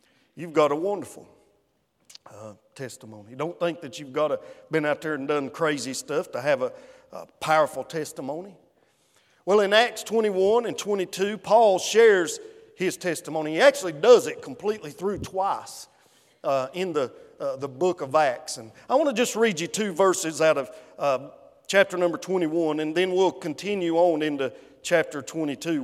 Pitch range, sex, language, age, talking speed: 155-220 Hz, male, English, 50-69, 170 wpm